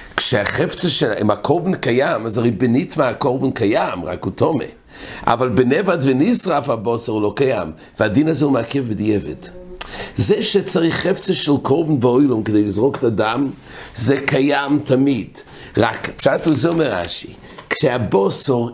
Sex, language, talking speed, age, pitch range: male, English, 130 wpm, 60-79, 110-145 Hz